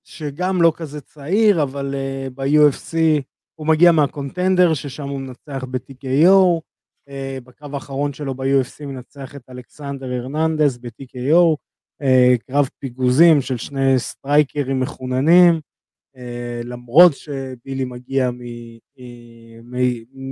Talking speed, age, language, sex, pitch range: 110 wpm, 20-39, Hebrew, male, 130-160 Hz